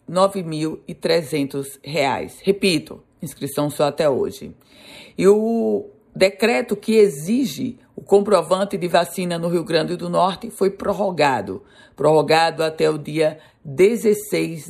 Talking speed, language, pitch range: 115 wpm, Portuguese, 155-200 Hz